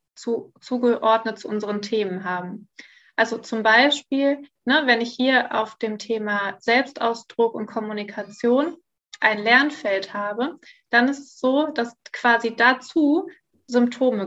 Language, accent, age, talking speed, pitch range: German, German, 20-39, 120 wpm, 220-250 Hz